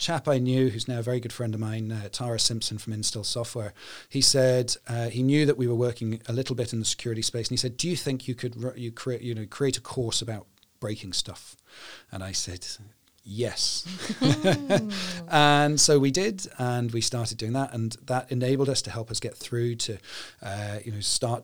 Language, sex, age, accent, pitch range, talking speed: English, male, 40-59, British, 110-130 Hz, 220 wpm